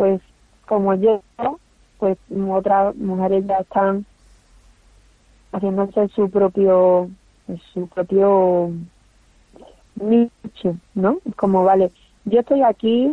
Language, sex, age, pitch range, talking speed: Spanish, female, 30-49, 190-220 Hz, 90 wpm